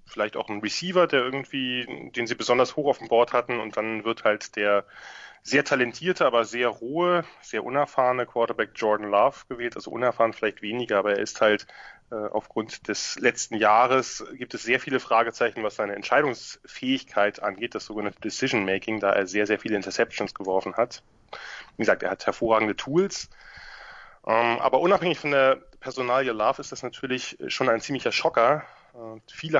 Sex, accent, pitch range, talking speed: male, German, 105-135 Hz, 170 wpm